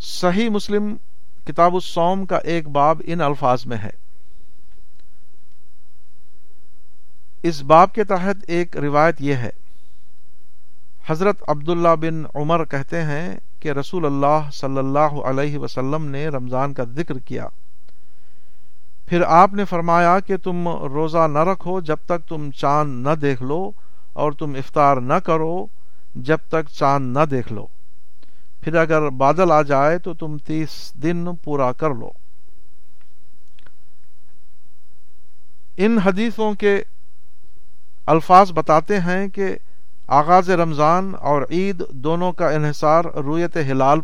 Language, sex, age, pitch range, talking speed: Urdu, male, 60-79, 130-170 Hz, 125 wpm